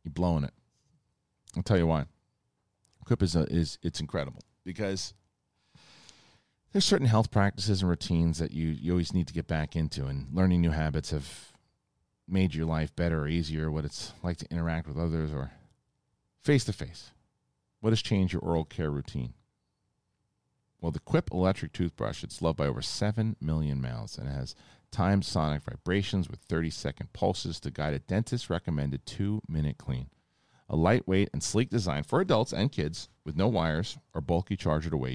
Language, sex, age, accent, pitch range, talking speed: English, male, 40-59, American, 75-100 Hz, 170 wpm